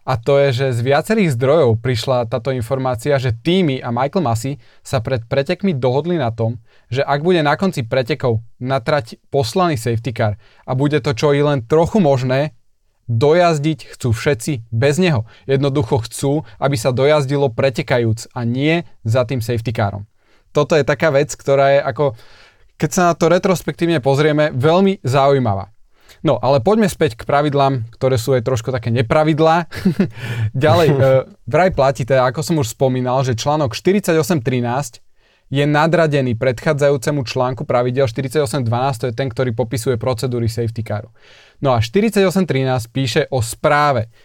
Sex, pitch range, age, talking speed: male, 120-150 Hz, 20-39, 155 wpm